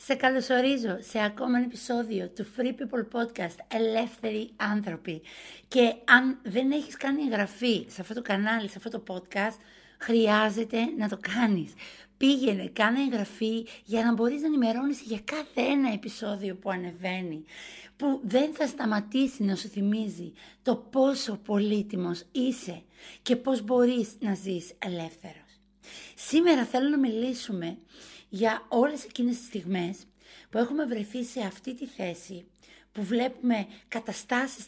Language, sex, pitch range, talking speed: Greek, female, 195-245 Hz, 140 wpm